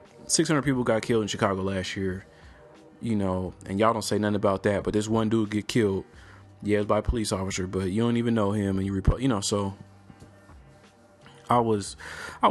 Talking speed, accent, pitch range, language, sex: 200 wpm, American, 95-110 Hz, English, male